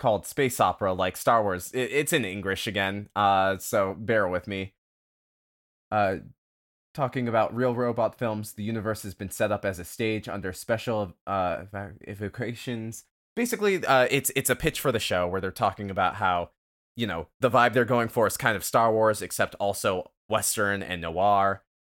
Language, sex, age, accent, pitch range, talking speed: English, male, 20-39, American, 95-115 Hz, 180 wpm